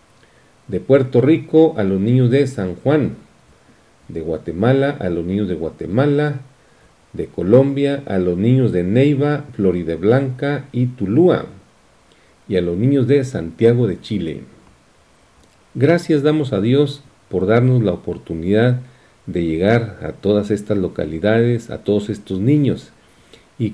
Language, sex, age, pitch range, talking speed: Spanish, male, 50-69, 95-135 Hz, 135 wpm